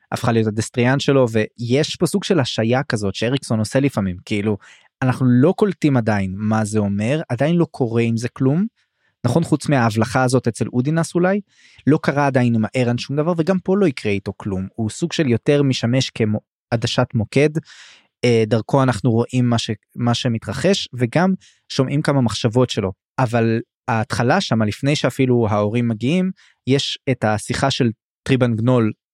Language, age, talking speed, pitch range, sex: Hebrew, 20-39, 165 wpm, 115-135 Hz, male